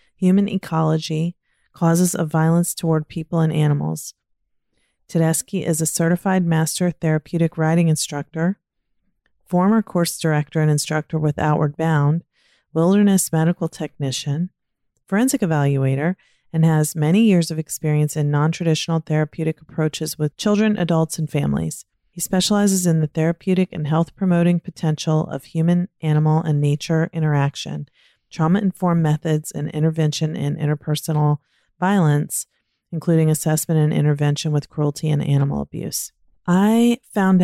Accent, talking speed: American, 120 wpm